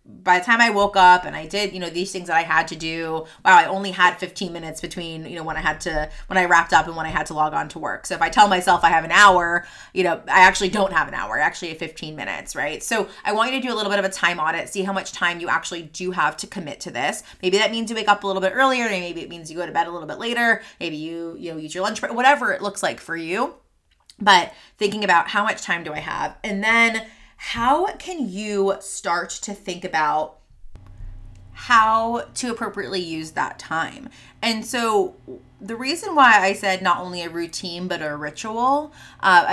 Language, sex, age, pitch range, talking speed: English, female, 30-49, 165-210 Hz, 250 wpm